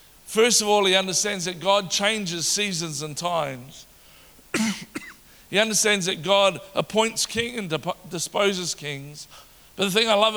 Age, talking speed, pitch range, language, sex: 50-69, 145 wpm, 170-210 Hz, English, male